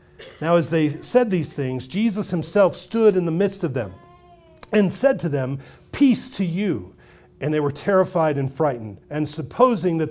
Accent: American